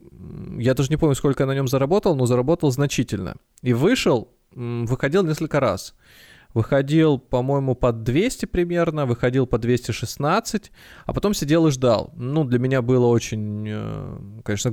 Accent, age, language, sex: native, 20-39, Russian, male